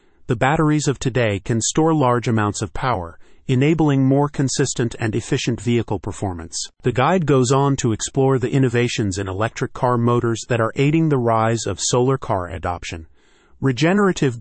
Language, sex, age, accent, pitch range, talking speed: English, male, 40-59, American, 110-135 Hz, 160 wpm